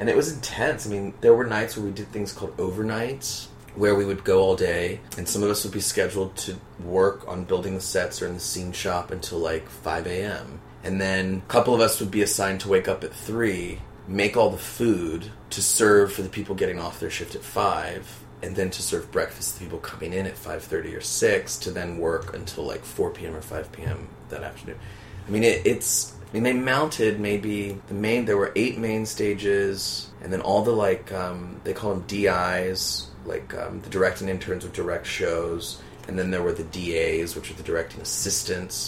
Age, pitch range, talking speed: 30-49, 95-105 Hz, 220 wpm